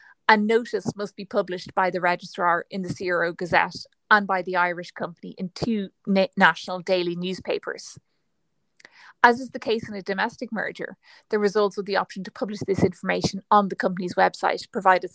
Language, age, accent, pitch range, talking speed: English, 30-49, Irish, 180-220 Hz, 175 wpm